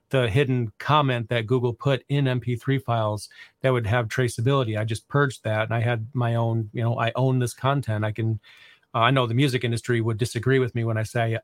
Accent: American